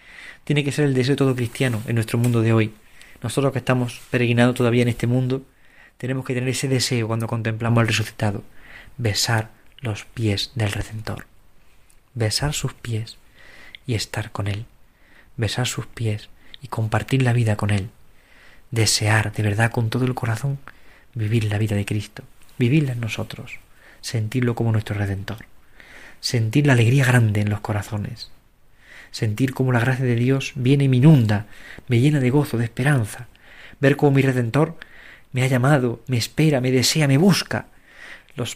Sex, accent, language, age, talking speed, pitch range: male, Spanish, Spanish, 20-39, 165 wpm, 110-130 Hz